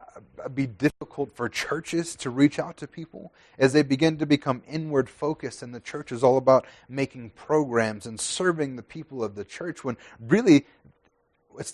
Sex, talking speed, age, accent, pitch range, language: male, 175 wpm, 30-49, American, 110-155 Hz, English